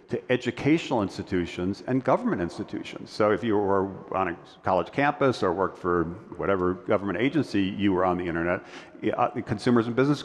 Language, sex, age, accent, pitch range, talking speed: English, male, 50-69, American, 90-105 Hz, 170 wpm